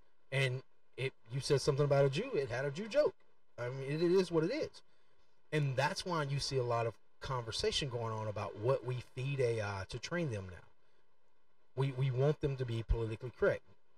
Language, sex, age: English, male, 40-59